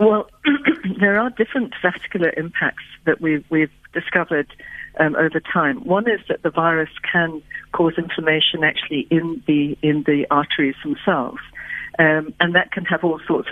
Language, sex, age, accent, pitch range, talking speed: English, female, 60-79, British, 145-175 Hz, 155 wpm